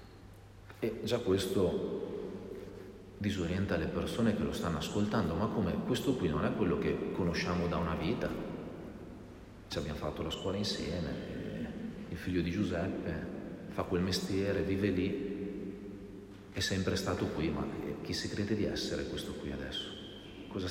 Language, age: Italian, 40-59